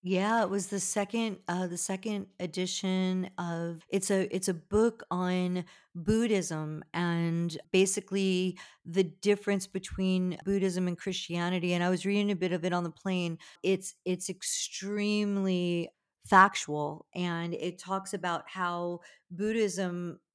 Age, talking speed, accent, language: 40-59, 135 wpm, American, English